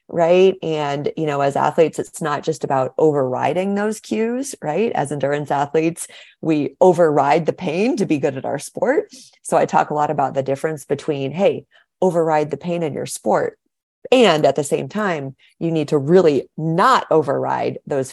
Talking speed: 180 wpm